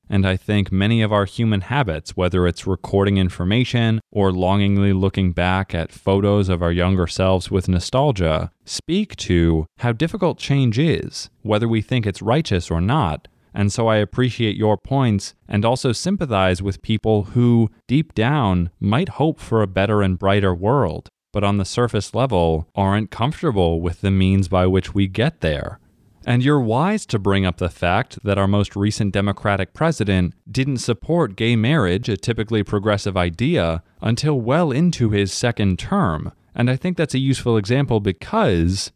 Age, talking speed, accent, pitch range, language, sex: 20-39, 170 wpm, American, 95-125 Hz, English, male